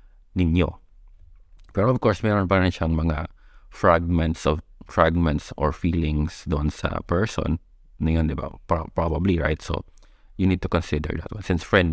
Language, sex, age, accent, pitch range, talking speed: Filipino, male, 20-39, native, 80-90 Hz, 160 wpm